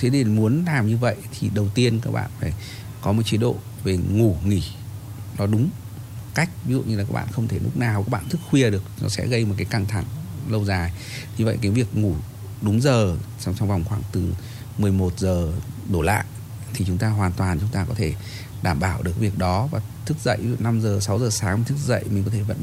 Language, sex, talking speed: Vietnamese, male, 240 wpm